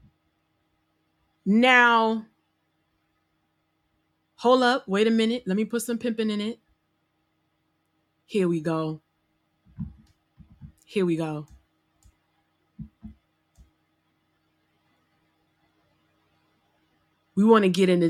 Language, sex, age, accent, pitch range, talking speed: English, female, 20-39, American, 180-225 Hz, 80 wpm